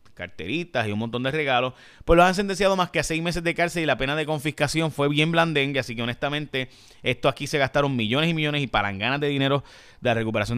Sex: male